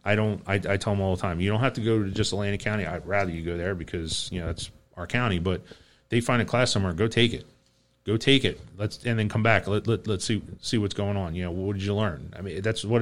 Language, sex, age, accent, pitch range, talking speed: English, male, 30-49, American, 100-125 Hz, 295 wpm